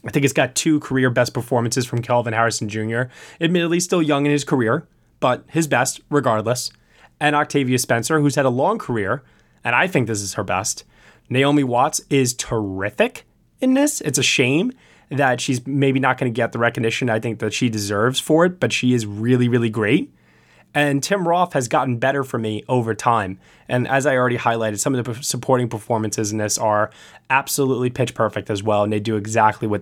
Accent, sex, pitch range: American, male, 110-135 Hz